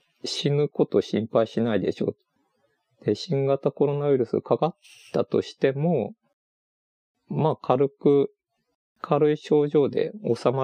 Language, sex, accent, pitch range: Japanese, male, native, 105-170 Hz